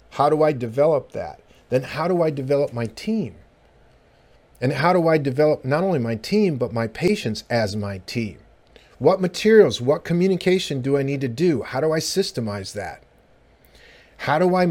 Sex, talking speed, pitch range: male, 180 wpm, 115-165 Hz